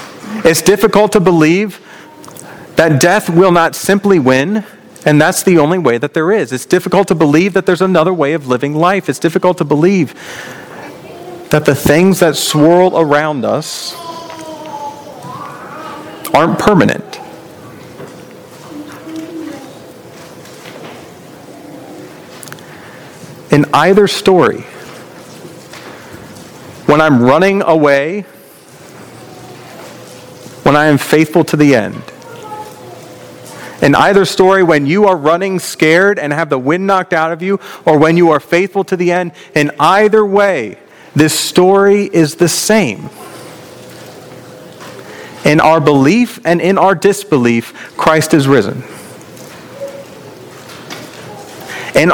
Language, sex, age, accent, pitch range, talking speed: English, male, 40-59, American, 155-200 Hz, 115 wpm